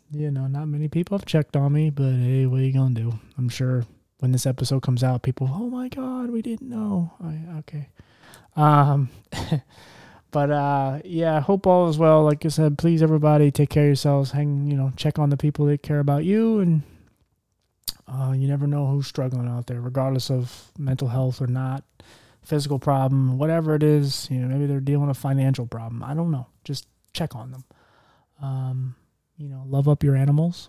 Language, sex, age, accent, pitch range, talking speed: English, male, 20-39, American, 125-150 Hz, 205 wpm